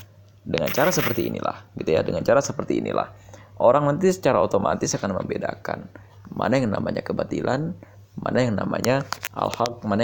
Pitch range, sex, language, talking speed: 100-125 Hz, male, Indonesian, 150 wpm